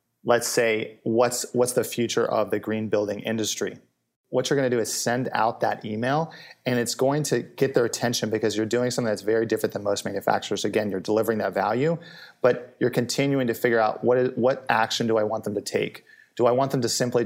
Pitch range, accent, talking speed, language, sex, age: 105-120 Hz, American, 225 wpm, English, male, 30-49